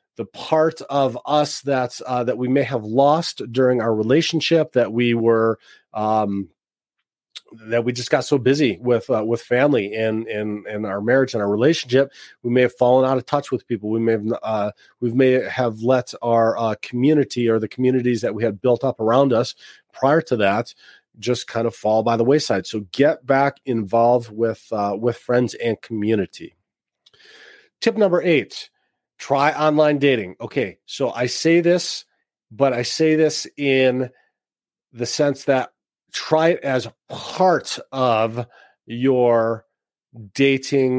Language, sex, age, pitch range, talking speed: English, male, 30-49, 115-140 Hz, 165 wpm